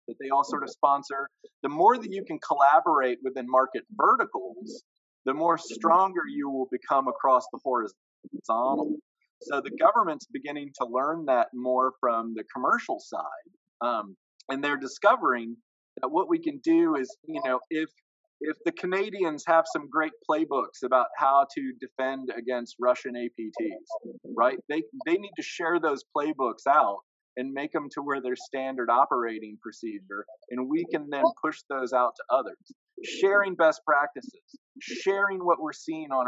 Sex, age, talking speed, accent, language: male, 40-59, 160 wpm, American, English